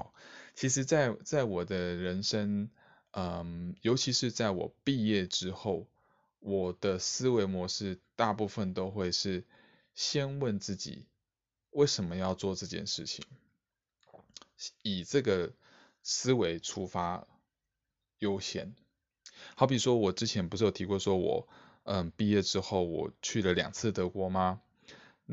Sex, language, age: male, Chinese, 20-39